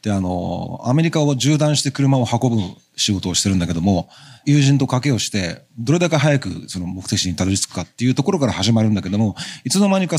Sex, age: male, 40-59